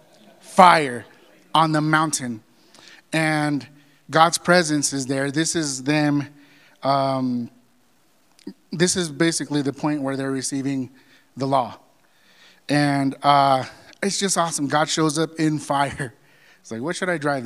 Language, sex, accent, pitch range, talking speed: English, male, American, 140-180 Hz, 135 wpm